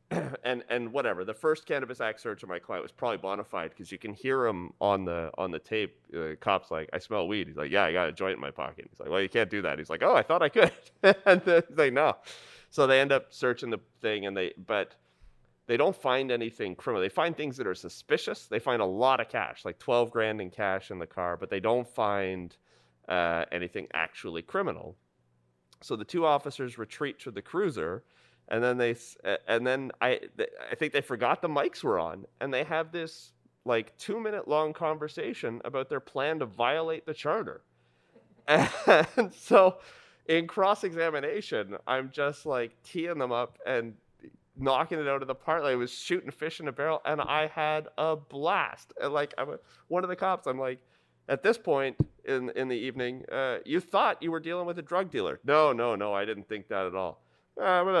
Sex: male